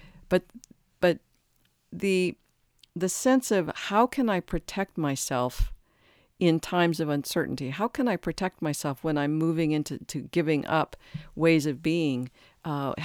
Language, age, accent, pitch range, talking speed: English, 50-69, American, 145-170 Hz, 145 wpm